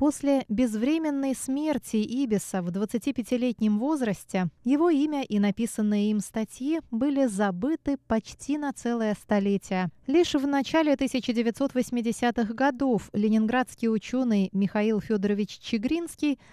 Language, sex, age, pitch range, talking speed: Russian, female, 20-39, 210-270 Hz, 105 wpm